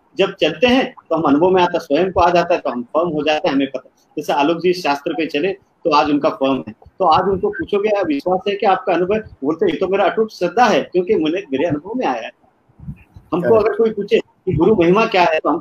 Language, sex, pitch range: Hindi, male, 150-215 Hz